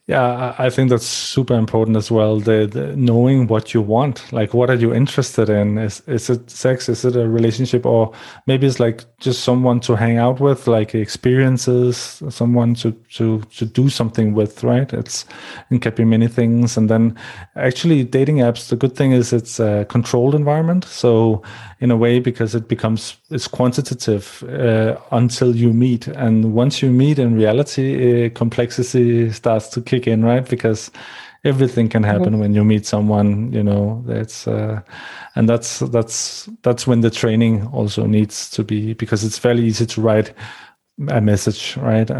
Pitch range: 110-125 Hz